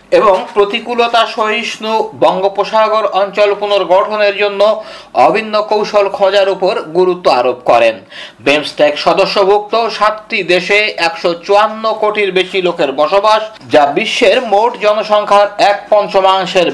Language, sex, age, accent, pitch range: Bengali, male, 50-69, native, 185-220 Hz